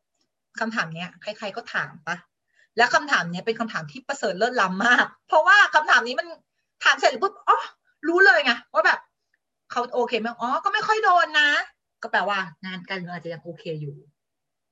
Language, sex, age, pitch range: Thai, female, 30-49, 190-295 Hz